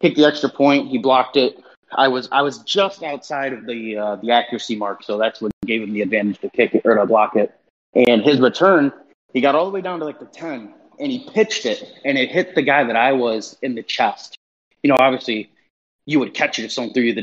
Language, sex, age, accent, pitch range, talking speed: English, male, 30-49, American, 115-145 Hz, 255 wpm